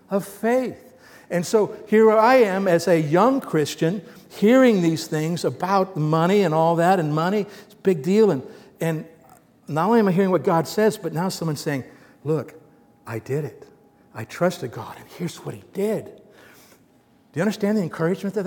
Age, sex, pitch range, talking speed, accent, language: 60-79, male, 160-215 Hz, 185 wpm, American, English